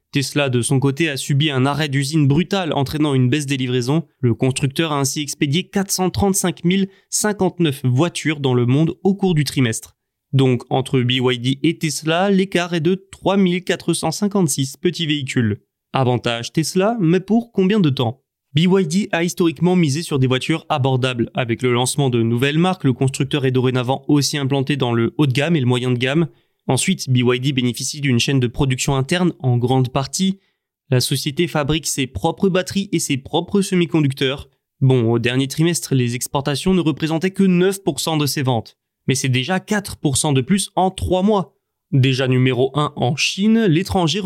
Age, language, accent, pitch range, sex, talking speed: 20-39, French, French, 130-175 Hz, male, 170 wpm